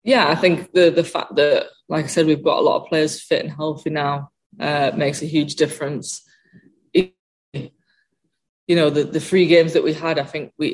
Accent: British